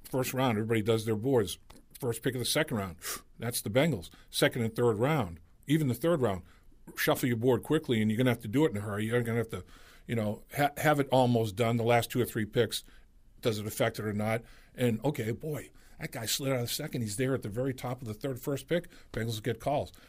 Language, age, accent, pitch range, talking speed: English, 50-69, American, 115-140 Hz, 255 wpm